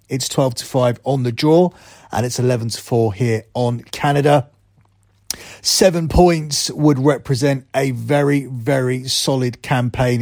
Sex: male